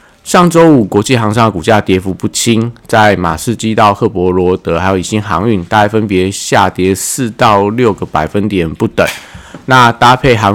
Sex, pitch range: male, 95-120 Hz